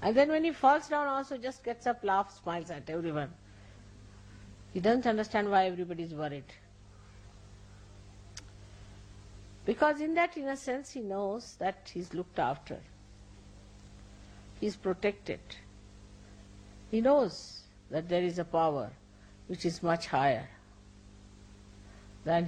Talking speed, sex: 120 wpm, female